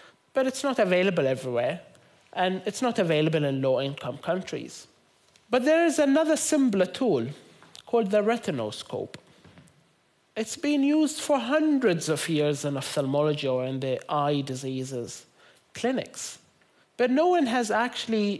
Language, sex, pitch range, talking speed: German, male, 150-235 Hz, 135 wpm